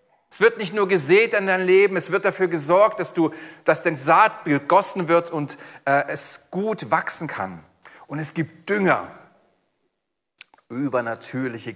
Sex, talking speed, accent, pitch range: male, 155 wpm, German, 155-205 Hz